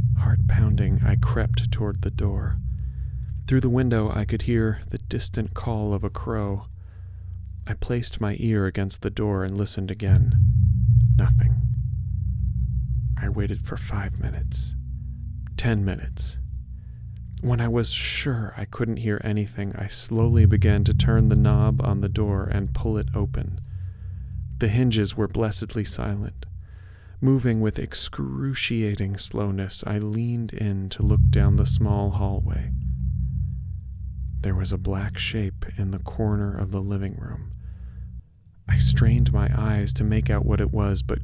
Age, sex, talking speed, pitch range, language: 40-59, male, 145 wpm, 95-110 Hz, English